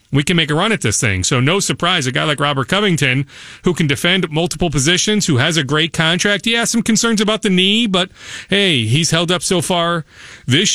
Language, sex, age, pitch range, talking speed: English, male, 40-59, 145-185 Hz, 230 wpm